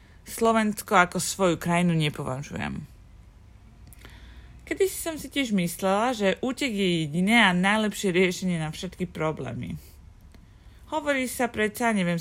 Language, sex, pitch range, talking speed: Slovak, female, 165-230 Hz, 125 wpm